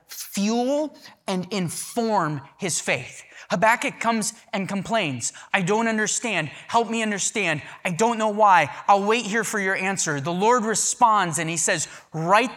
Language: English